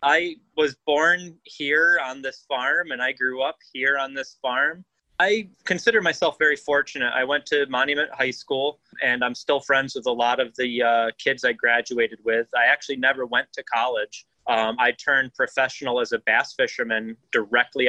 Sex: male